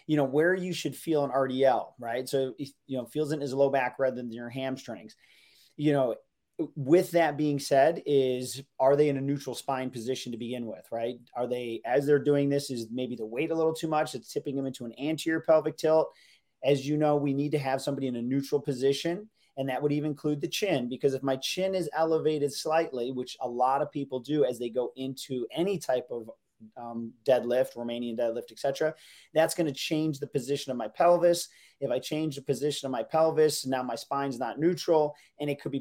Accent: American